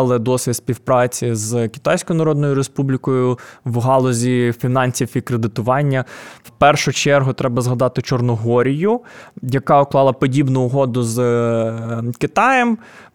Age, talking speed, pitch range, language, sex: 20-39, 105 wpm, 120-140 Hz, Ukrainian, male